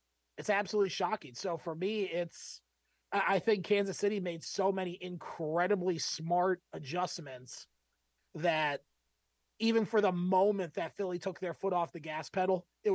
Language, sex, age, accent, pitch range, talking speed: English, male, 30-49, American, 160-195 Hz, 150 wpm